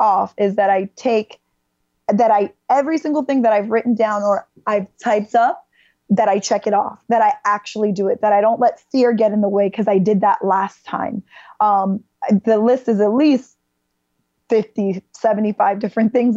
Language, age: English, 20-39